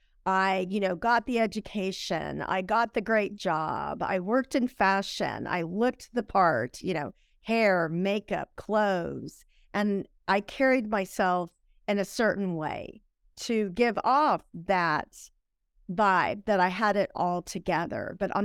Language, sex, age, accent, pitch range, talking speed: English, female, 50-69, American, 175-220 Hz, 145 wpm